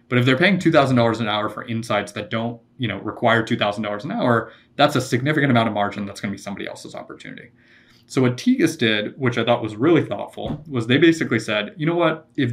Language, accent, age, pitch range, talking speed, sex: English, American, 20-39, 105-125 Hz, 215 wpm, male